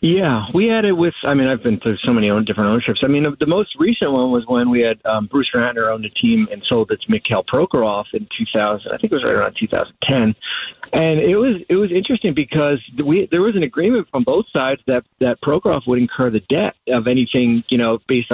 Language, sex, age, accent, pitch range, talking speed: English, male, 40-59, American, 120-160 Hz, 235 wpm